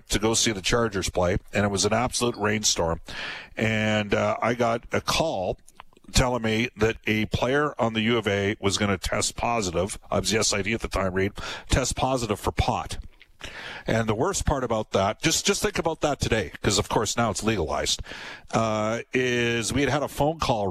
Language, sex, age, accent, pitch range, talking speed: English, male, 50-69, American, 100-125 Hz, 205 wpm